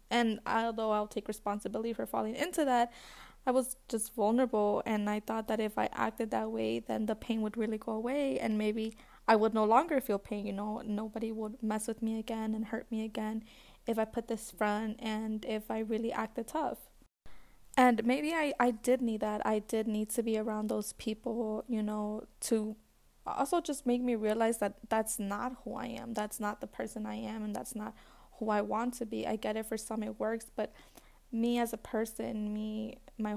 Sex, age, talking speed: female, 10-29, 210 wpm